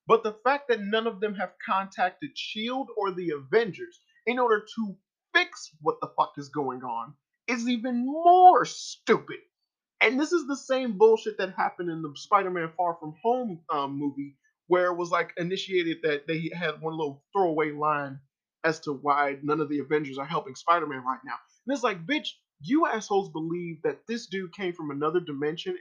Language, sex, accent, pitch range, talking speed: English, male, American, 150-225 Hz, 190 wpm